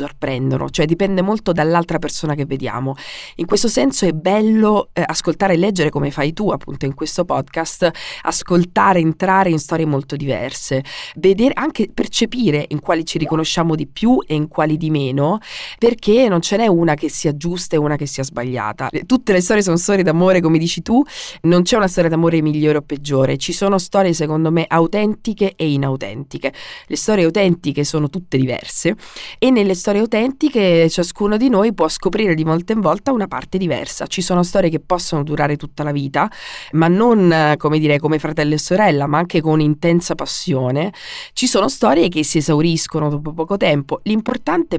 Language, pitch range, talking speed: Italian, 150-195 Hz, 180 wpm